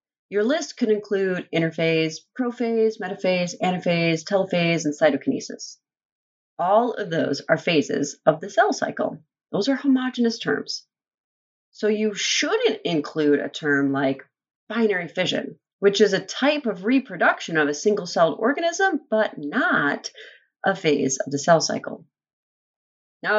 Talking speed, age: 135 wpm, 30-49